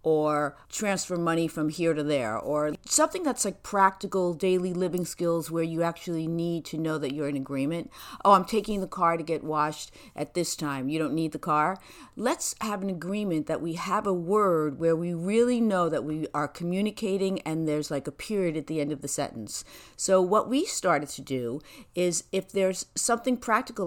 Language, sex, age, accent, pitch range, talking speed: English, female, 50-69, American, 155-205 Hz, 200 wpm